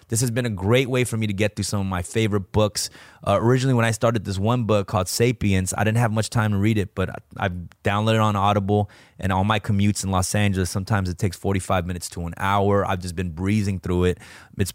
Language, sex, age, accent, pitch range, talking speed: English, male, 20-39, American, 95-115 Hz, 255 wpm